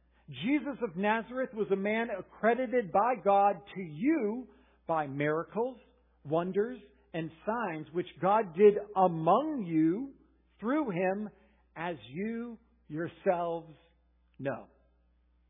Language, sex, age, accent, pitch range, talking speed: English, male, 50-69, American, 165-250 Hz, 105 wpm